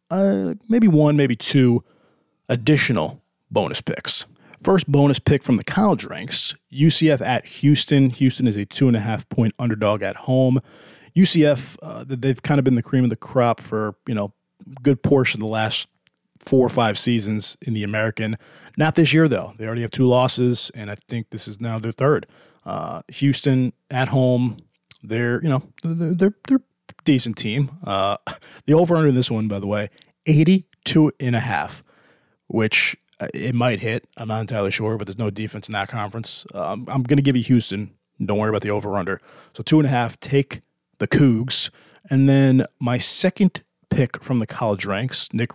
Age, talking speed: 20-39, 185 wpm